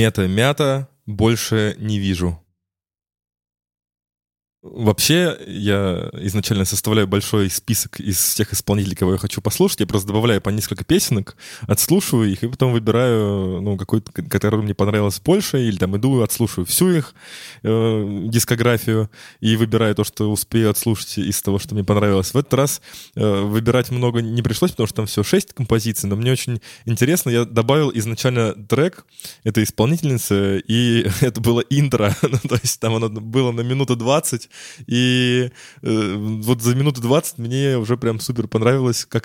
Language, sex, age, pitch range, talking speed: Russian, male, 20-39, 105-130 Hz, 155 wpm